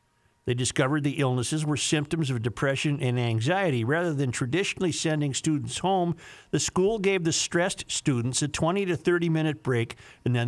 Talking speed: 165 wpm